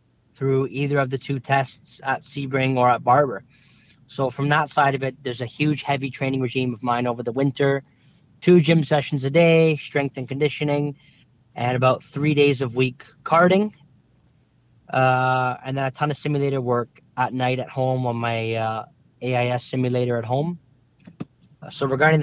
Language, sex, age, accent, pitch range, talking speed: English, male, 30-49, American, 125-145 Hz, 175 wpm